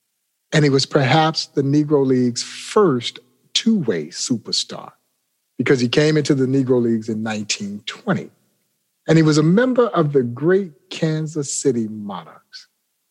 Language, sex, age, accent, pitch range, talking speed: English, male, 50-69, American, 130-165 Hz, 135 wpm